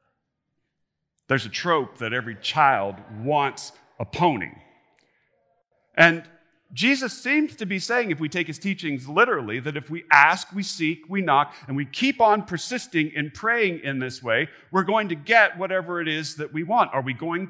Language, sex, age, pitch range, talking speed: English, male, 40-59, 130-195 Hz, 180 wpm